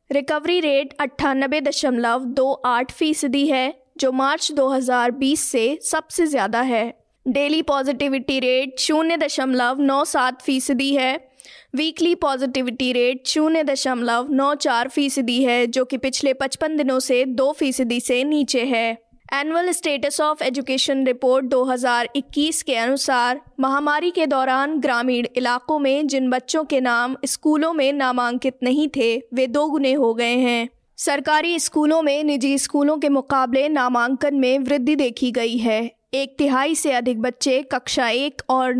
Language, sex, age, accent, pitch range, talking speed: Hindi, female, 20-39, native, 250-285 Hz, 135 wpm